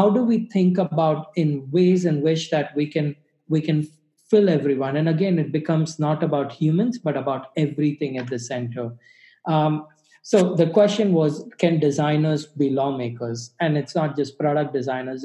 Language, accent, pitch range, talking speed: English, Indian, 135-170 Hz, 175 wpm